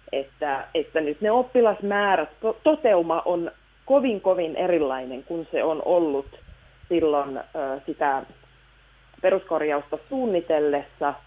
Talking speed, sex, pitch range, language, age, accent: 95 wpm, female, 145-185 Hz, Finnish, 30-49, native